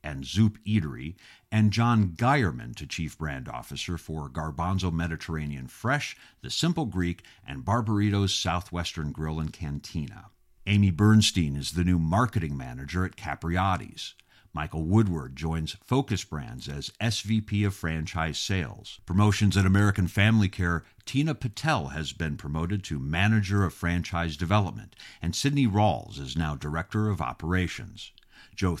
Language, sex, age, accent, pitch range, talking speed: English, male, 50-69, American, 80-110 Hz, 135 wpm